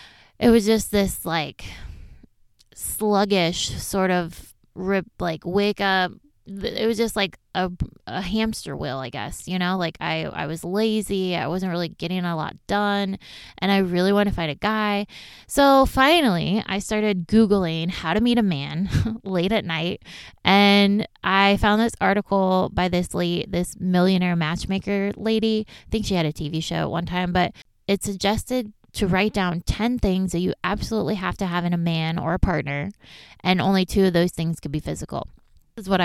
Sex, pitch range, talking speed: female, 175-205 Hz, 185 wpm